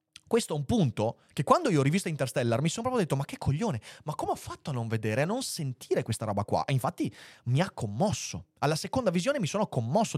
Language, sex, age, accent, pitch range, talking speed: Italian, male, 30-49, native, 125-185 Hz, 235 wpm